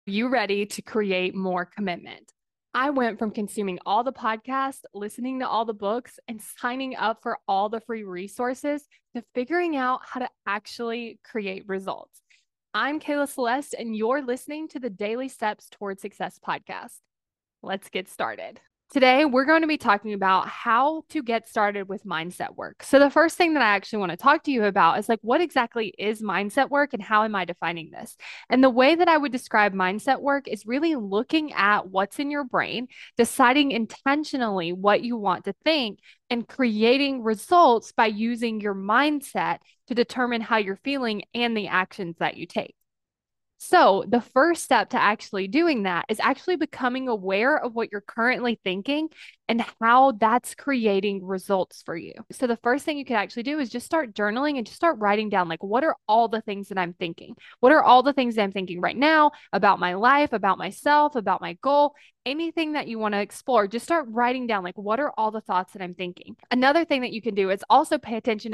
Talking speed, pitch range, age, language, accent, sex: 200 wpm, 205-270 Hz, 20-39, English, American, female